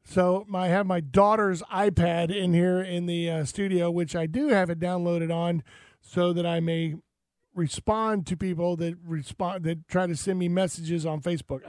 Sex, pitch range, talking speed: male, 160-185 Hz, 190 wpm